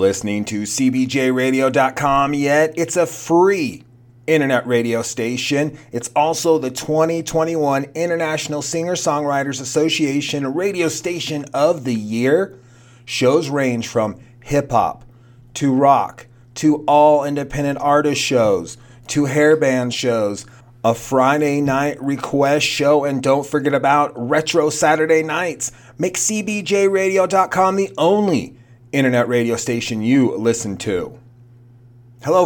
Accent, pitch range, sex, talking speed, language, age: American, 115-145 Hz, male, 110 wpm, English, 30-49